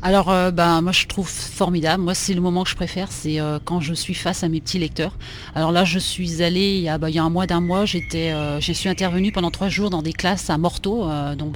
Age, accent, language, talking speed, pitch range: 30-49, French, French, 285 wpm, 170-200 Hz